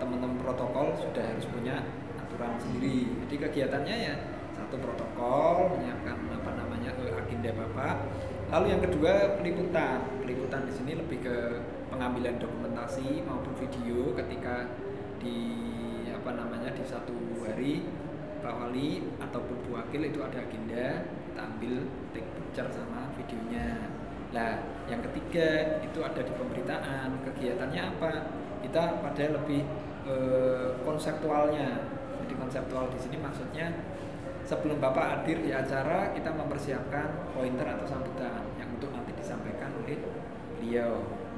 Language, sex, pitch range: Indonesian, male, 125-150 Hz